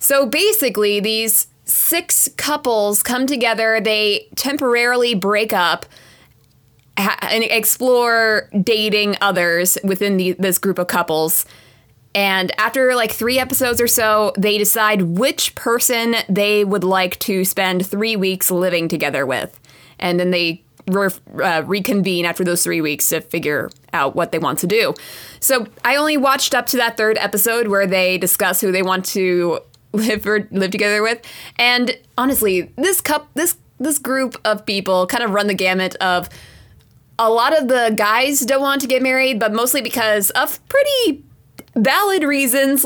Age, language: 20-39, English